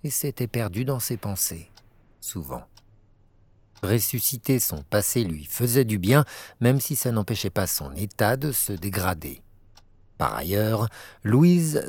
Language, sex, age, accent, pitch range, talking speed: French, male, 60-79, French, 100-130 Hz, 135 wpm